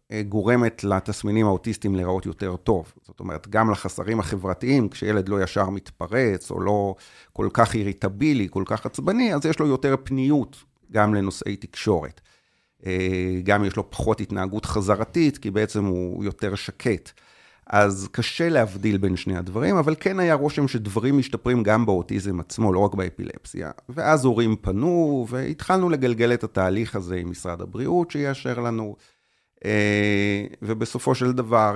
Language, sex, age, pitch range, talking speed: Hebrew, male, 40-59, 95-120 Hz, 145 wpm